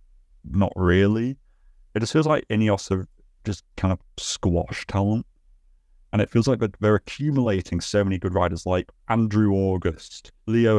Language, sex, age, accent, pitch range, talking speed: English, male, 30-49, British, 90-105 Hz, 150 wpm